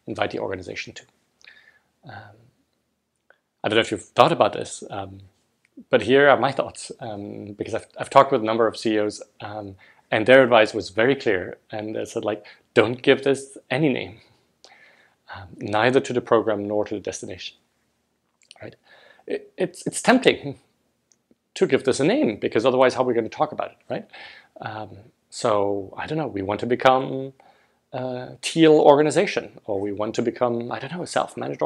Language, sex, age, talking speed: English, male, 30-49, 180 wpm